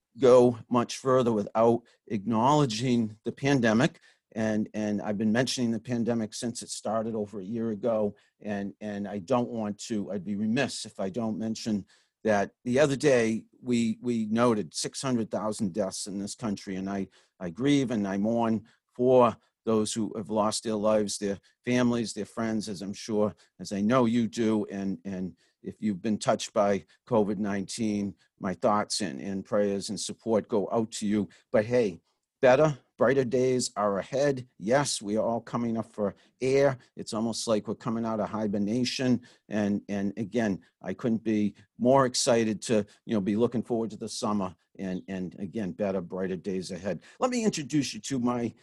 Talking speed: 180 wpm